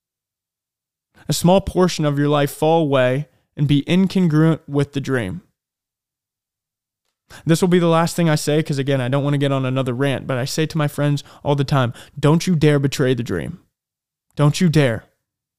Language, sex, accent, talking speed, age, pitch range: English, male, American, 190 wpm, 20-39, 135-160 Hz